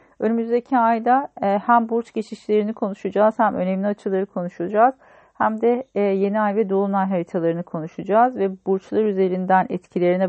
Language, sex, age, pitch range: Turkish, female, 40-59, 180-225 Hz